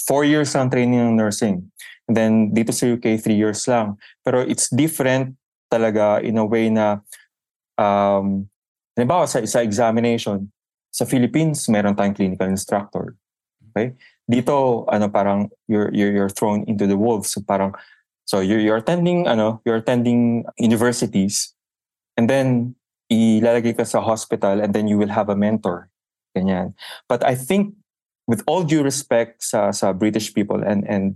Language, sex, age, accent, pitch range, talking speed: English, male, 20-39, Filipino, 100-120 Hz, 155 wpm